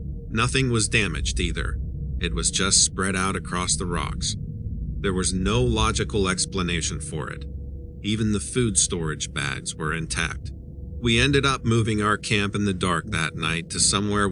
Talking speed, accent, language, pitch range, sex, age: 165 wpm, American, English, 80-100 Hz, male, 50-69